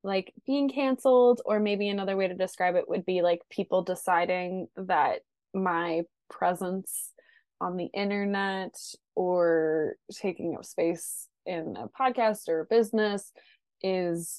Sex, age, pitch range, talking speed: female, 20-39, 180-225 Hz, 135 wpm